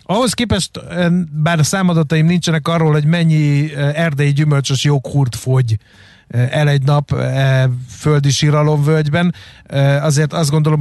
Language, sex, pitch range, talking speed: Hungarian, male, 130-150 Hz, 110 wpm